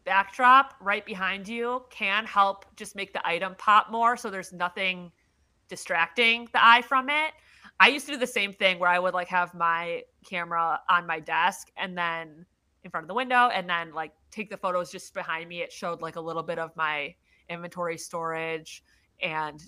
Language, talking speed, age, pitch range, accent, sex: English, 195 wpm, 30-49, 170-235 Hz, American, female